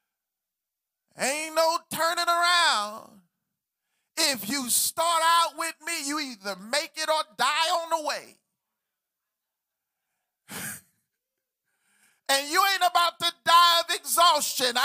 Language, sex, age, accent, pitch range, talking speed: English, male, 40-59, American, 270-345 Hz, 110 wpm